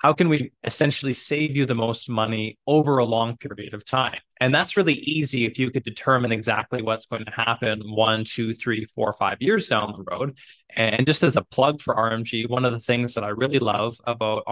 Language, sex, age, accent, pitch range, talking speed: English, male, 20-39, American, 115-135 Hz, 220 wpm